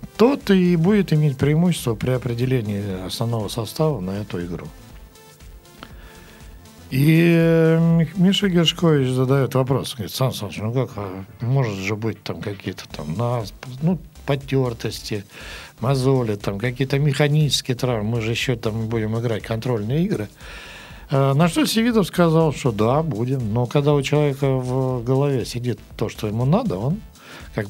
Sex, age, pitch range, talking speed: male, 60-79, 105-150 Hz, 140 wpm